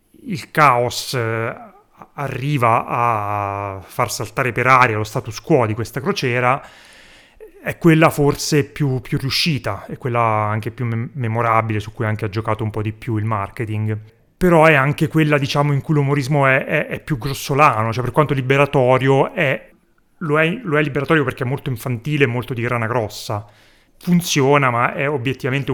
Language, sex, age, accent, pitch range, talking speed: Italian, male, 30-49, native, 115-145 Hz, 170 wpm